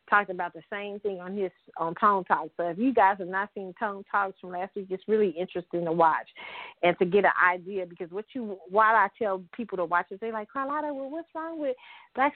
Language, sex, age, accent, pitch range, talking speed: English, female, 30-49, American, 175-215 Hz, 245 wpm